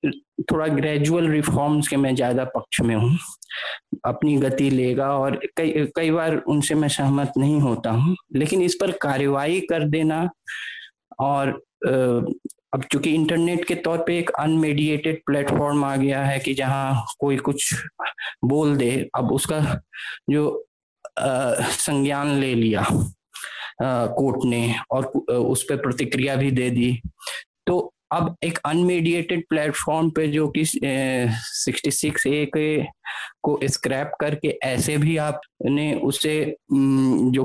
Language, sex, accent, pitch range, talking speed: Hindi, male, native, 135-155 Hz, 130 wpm